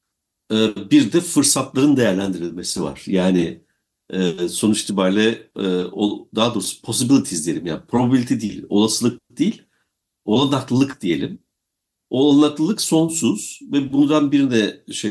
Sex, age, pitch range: male, 60-79, 110-165 Hz